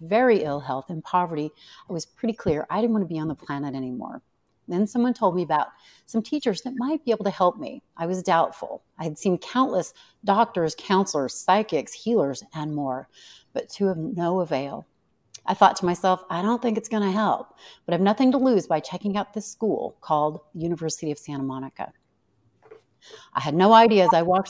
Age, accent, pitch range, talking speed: 40-59, American, 150-220 Hz, 205 wpm